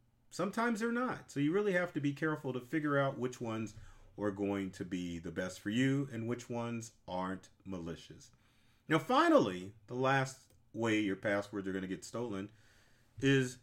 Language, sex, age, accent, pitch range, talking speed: English, male, 40-59, American, 100-140 Hz, 180 wpm